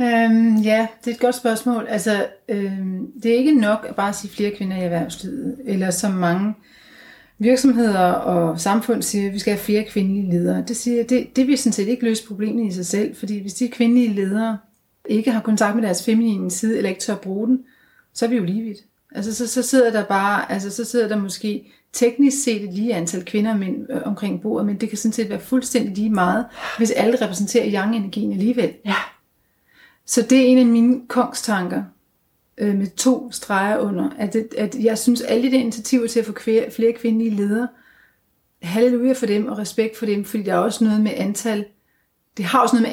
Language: Danish